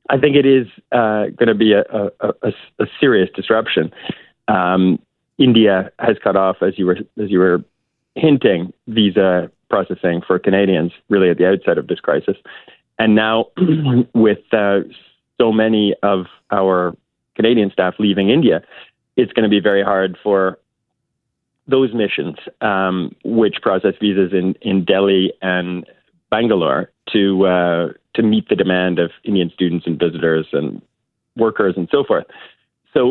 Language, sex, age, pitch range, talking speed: English, male, 30-49, 95-115 Hz, 150 wpm